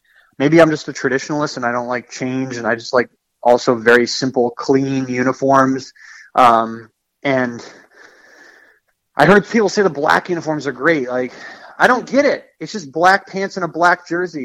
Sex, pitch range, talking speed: male, 130-170 Hz, 180 wpm